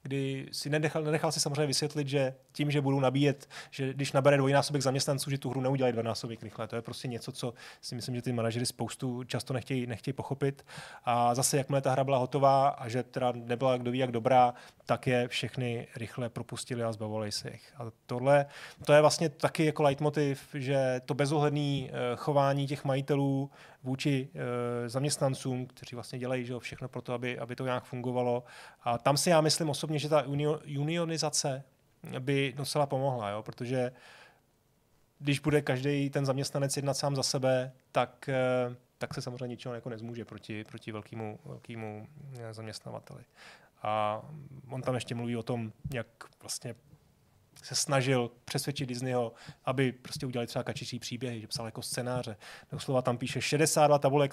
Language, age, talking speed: Czech, 30-49, 165 wpm